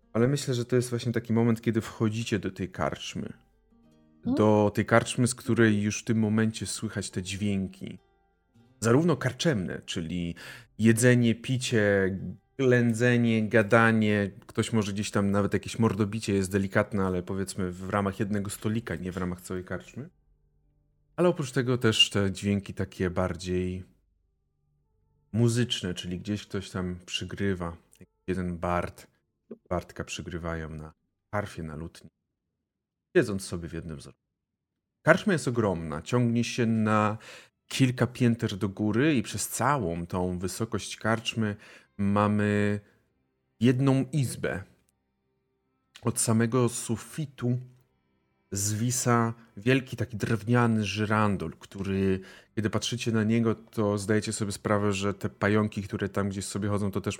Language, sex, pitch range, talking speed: Polish, male, 90-115 Hz, 130 wpm